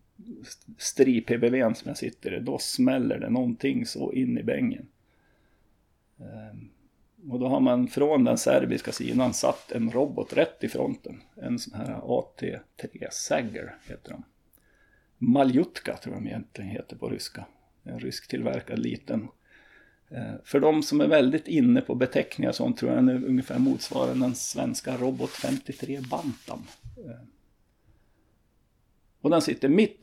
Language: Swedish